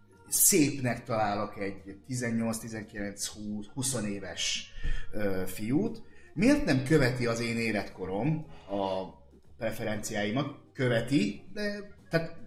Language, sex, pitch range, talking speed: Hungarian, male, 100-135 Hz, 80 wpm